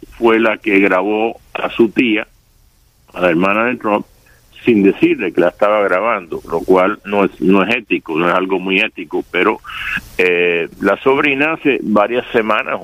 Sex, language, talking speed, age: male, English, 170 wpm, 60-79